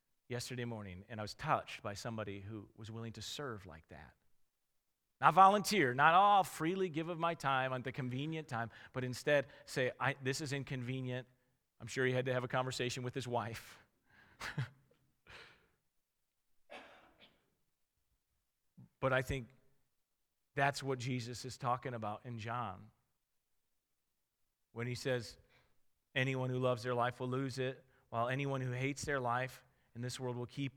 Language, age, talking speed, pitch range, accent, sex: English, 40-59, 150 wpm, 115-135 Hz, American, male